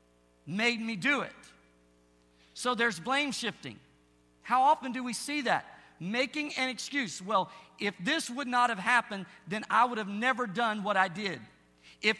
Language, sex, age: English, male, 50-69